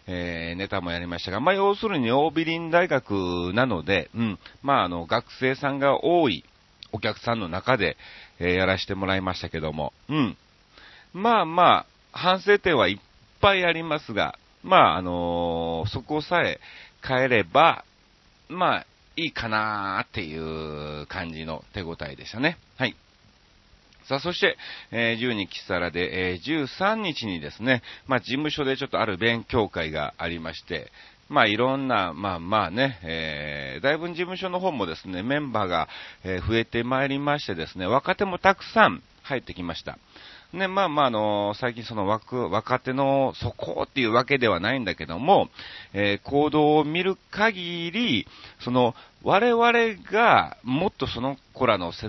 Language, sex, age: Japanese, male, 40-59